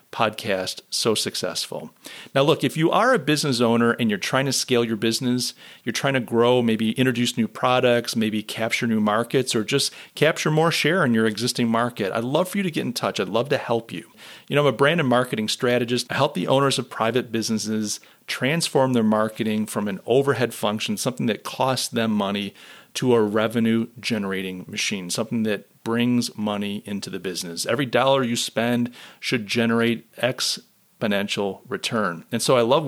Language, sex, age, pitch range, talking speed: English, male, 40-59, 110-130 Hz, 190 wpm